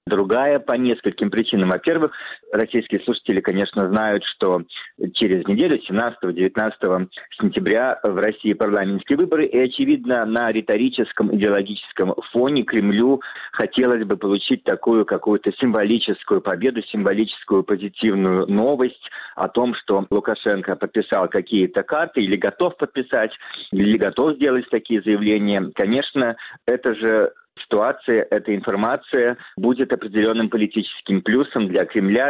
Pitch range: 100-130 Hz